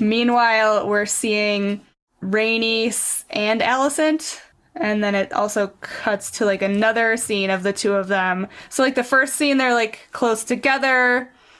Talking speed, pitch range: 150 wpm, 200-230 Hz